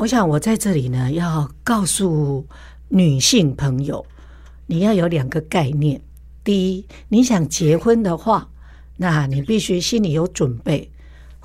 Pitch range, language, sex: 150-200 Hz, Chinese, female